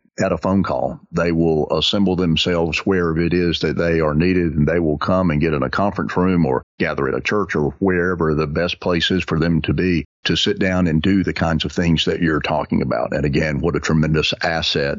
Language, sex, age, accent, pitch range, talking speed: English, male, 40-59, American, 80-95 Hz, 235 wpm